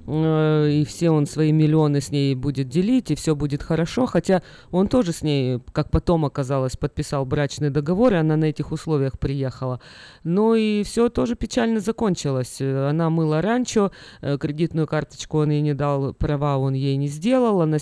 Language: Russian